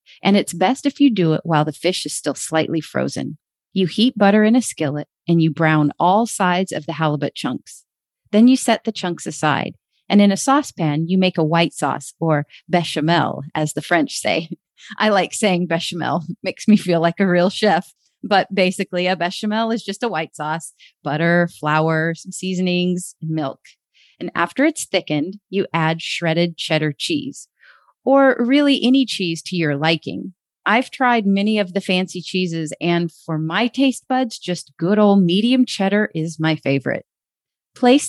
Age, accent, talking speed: 30-49, American, 180 wpm